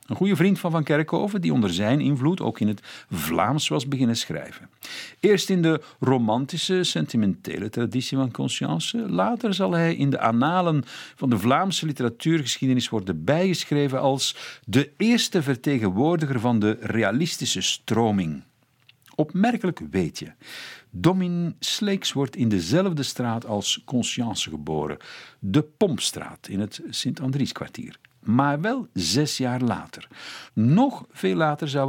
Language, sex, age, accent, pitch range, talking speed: Dutch, male, 50-69, Dutch, 115-160 Hz, 135 wpm